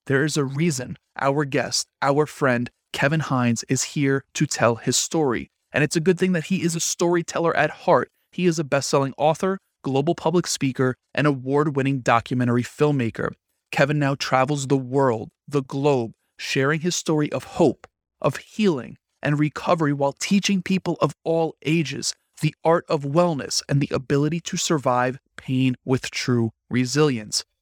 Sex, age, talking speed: male, 30-49, 165 wpm